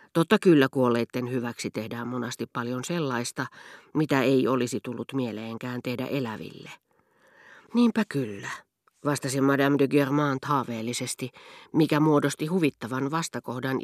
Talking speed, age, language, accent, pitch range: 115 wpm, 40-59, Finnish, native, 120-150 Hz